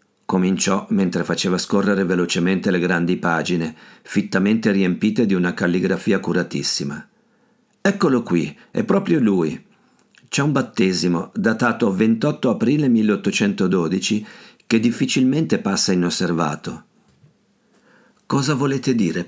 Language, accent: Italian, native